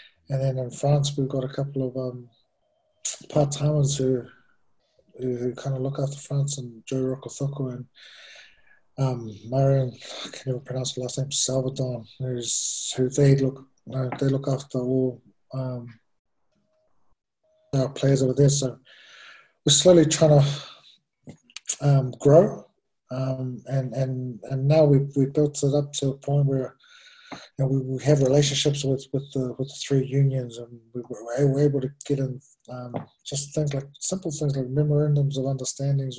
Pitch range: 125-140 Hz